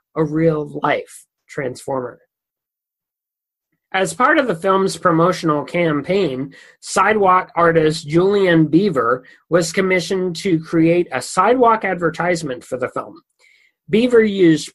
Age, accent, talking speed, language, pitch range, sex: 40-59, American, 105 wpm, English, 155-200 Hz, male